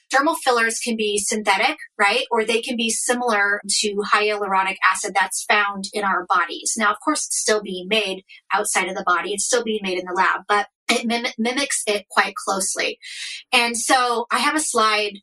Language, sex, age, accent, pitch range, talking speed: English, female, 30-49, American, 200-245 Hz, 195 wpm